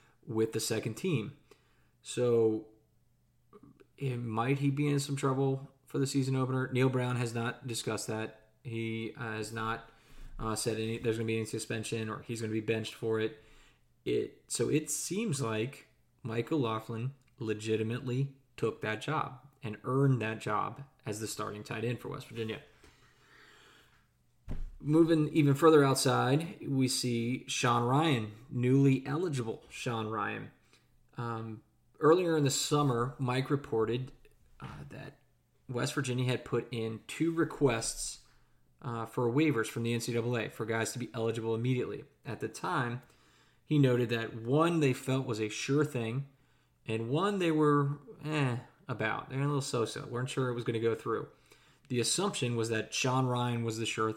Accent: American